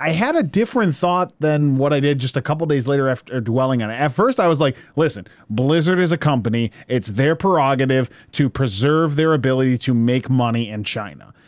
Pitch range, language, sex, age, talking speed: 130-170 Hz, English, male, 30-49, 210 wpm